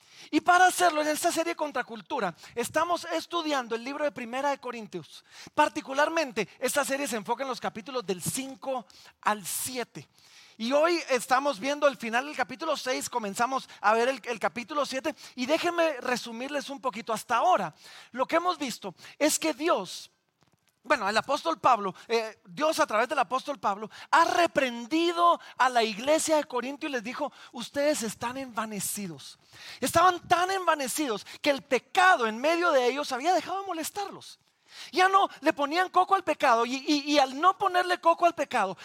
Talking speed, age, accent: 175 wpm, 40-59, Mexican